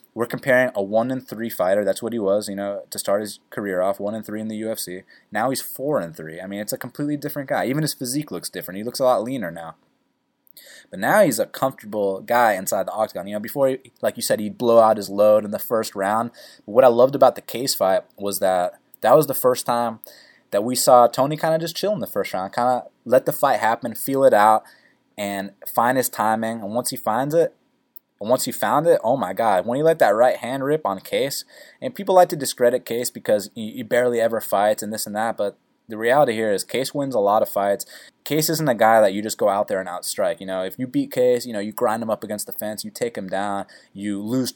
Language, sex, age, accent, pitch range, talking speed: English, male, 20-39, American, 100-130 Hz, 260 wpm